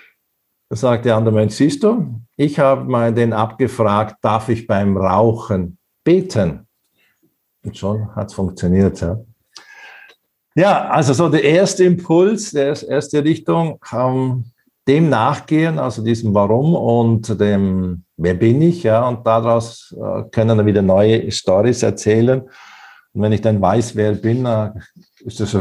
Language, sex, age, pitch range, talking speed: German, male, 50-69, 105-135 Hz, 150 wpm